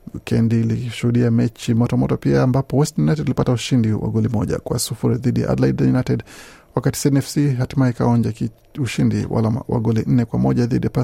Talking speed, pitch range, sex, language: 160 wpm, 115-130 Hz, male, Swahili